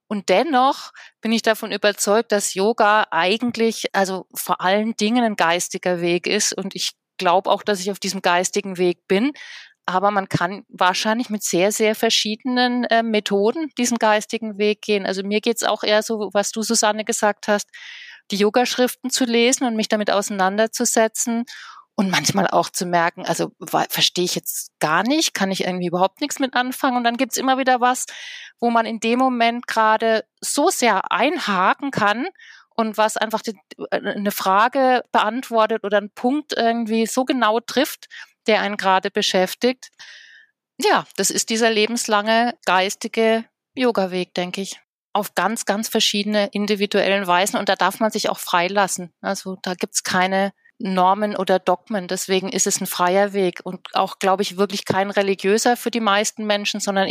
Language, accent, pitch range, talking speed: German, German, 190-230 Hz, 170 wpm